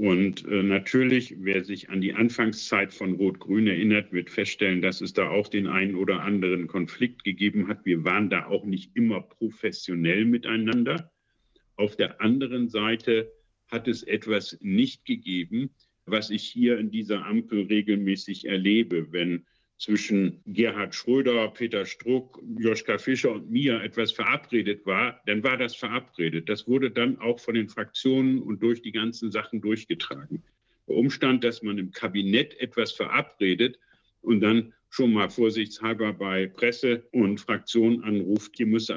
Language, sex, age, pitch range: German, male, 50-69, 100-115 Hz